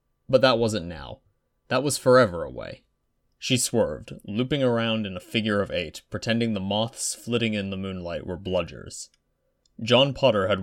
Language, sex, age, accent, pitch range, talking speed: English, male, 20-39, American, 95-125 Hz, 165 wpm